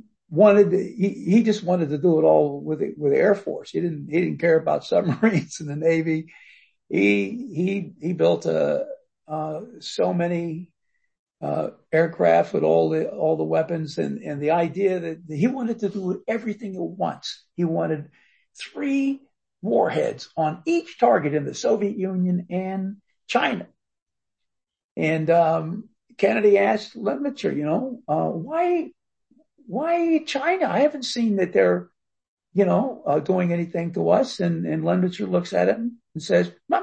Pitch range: 165-235 Hz